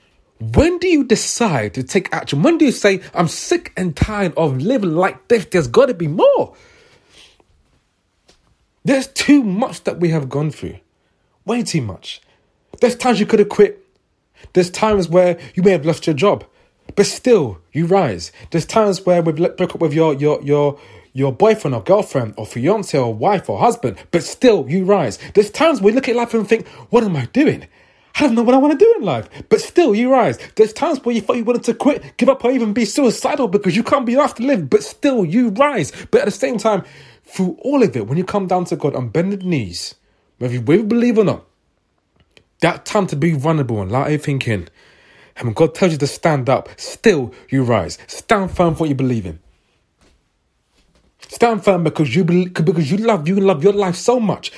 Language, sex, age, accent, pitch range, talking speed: English, male, 30-49, British, 150-235 Hz, 210 wpm